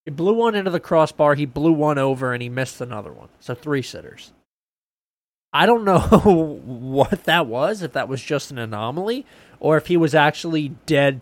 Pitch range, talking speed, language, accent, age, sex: 120-160 Hz, 195 wpm, English, American, 20-39, male